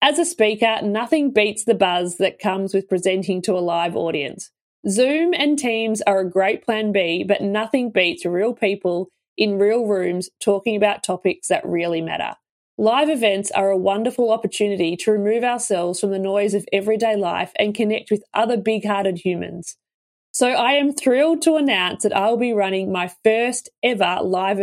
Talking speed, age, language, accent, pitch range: 180 wpm, 20-39, English, Australian, 190-235 Hz